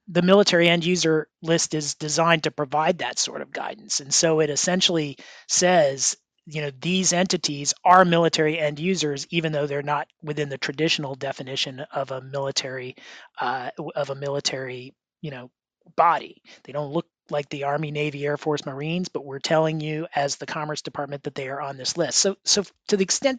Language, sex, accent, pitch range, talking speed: English, male, American, 140-170 Hz, 180 wpm